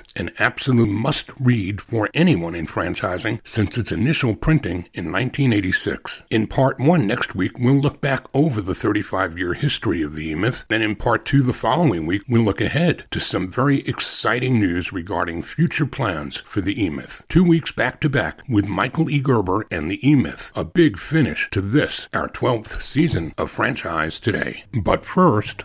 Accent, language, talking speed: American, English, 180 wpm